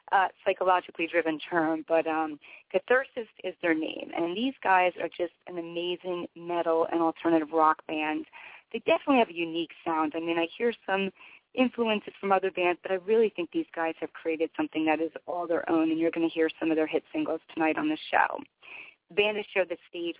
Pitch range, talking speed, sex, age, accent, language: 165-195 Hz, 210 wpm, female, 30-49, American, English